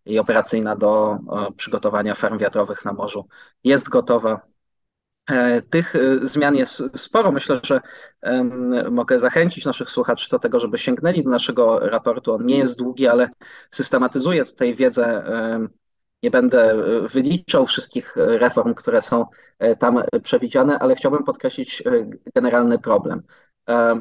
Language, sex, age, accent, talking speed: Polish, male, 20-39, native, 120 wpm